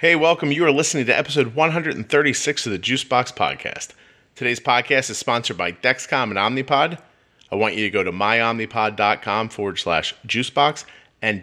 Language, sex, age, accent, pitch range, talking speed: English, male, 30-49, American, 95-130 Hz, 165 wpm